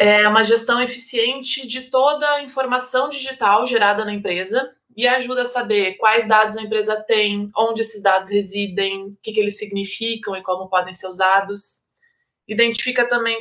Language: Portuguese